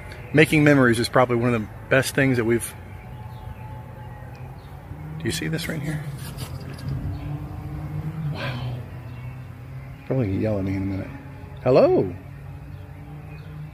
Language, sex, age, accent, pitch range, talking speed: English, male, 40-59, American, 110-140 Hz, 115 wpm